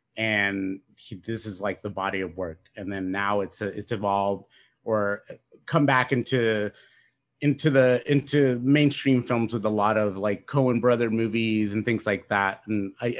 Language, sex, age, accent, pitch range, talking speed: English, male, 30-49, American, 100-125 Hz, 175 wpm